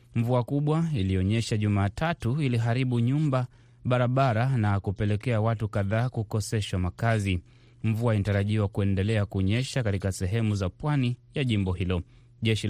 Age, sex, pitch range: 30-49, male, 105-125 Hz